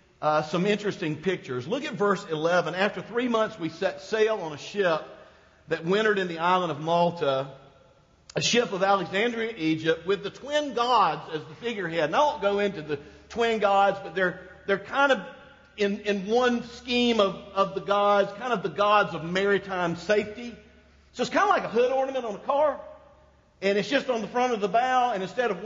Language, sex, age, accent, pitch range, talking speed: English, male, 50-69, American, 190-265 Hz, 205 wpm